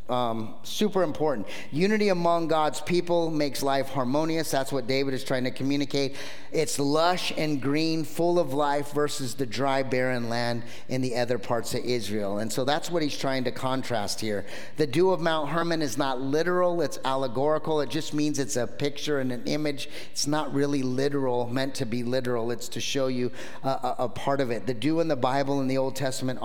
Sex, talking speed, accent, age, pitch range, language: male, 205 wpm, American, 30-49, 125-155 Hz, English